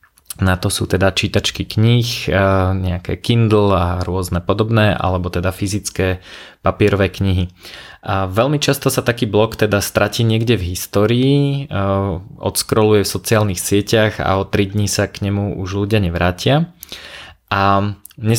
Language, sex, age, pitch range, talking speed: Slovak, male, 20-39, 95-110 Hz, 140 wpm